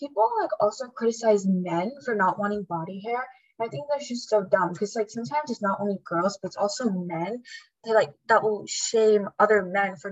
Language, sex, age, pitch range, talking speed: English, female, 10-29, 190-230 Hz, 195 wpm